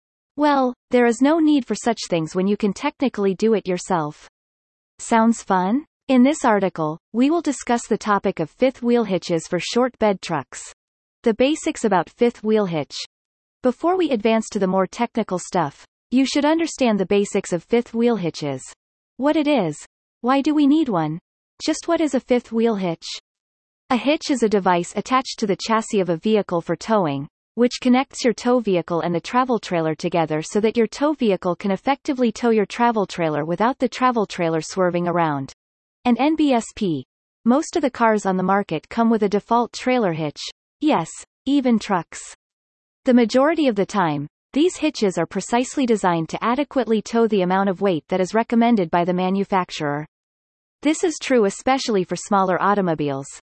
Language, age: English, 30-49